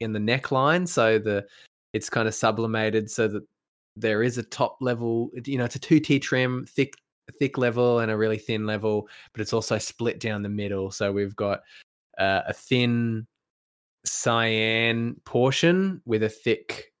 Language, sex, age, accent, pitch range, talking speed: English, male, 20-39, Australian, 100-115 Hz, 175 wpm